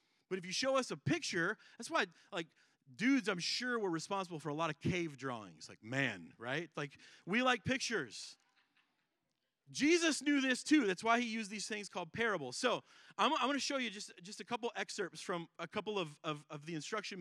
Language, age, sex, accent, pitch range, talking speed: English, 30-49, male, American, 165-255 Hz, 200 wpm